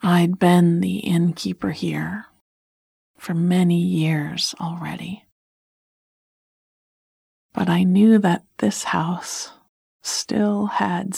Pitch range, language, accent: 160-195 Hz, English, American